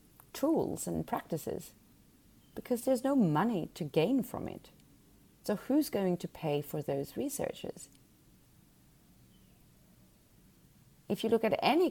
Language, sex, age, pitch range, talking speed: English, female, 30-49, 150-215 Hz, 120 wpm